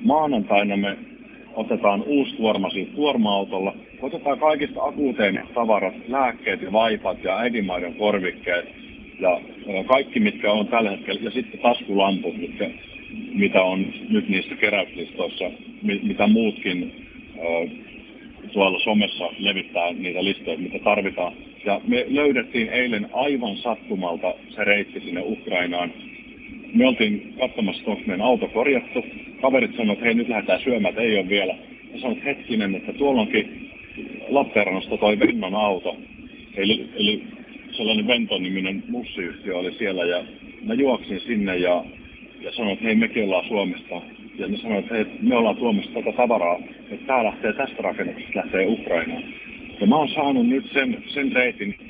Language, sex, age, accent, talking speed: Finnish, male, 50-69, native, 140 wpm